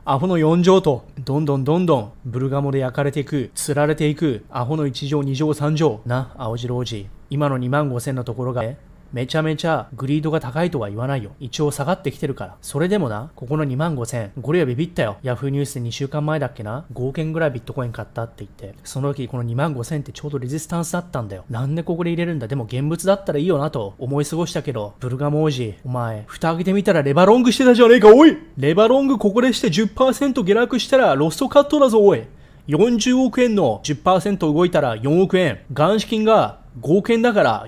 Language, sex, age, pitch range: Japanese, male, 20-39, 135-205 Hz